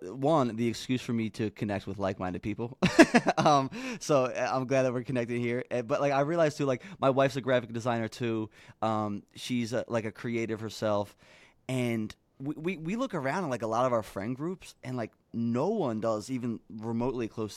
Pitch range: 115-150 Hz